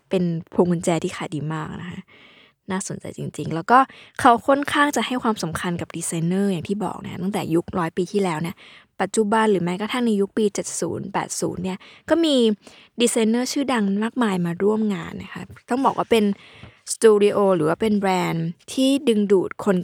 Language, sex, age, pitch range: Thai, female, 20-39, 180-230 Hz